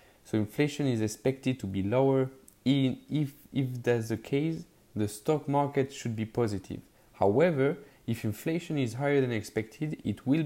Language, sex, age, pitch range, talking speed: English, male, 20-39, 105-135 Hz, 160 wpm